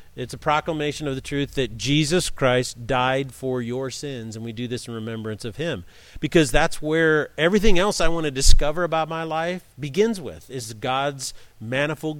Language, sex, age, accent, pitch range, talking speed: English, male, 40-59, American, 125-170 Hz, 185 wpm